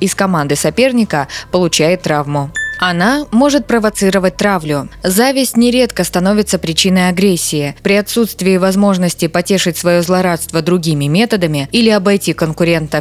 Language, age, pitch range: Russian, 20-39, 165-215 Hz